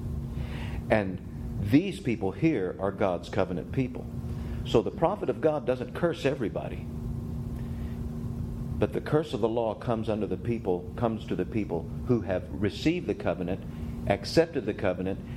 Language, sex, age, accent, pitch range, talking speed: English, male, 50-69, American, 95-125 Hz, 150 wpm